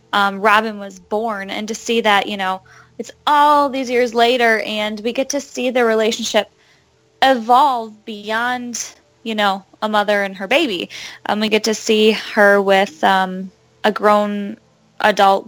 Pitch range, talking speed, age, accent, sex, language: 195-230 Hz, 165 wpm, 10-29, American, female, English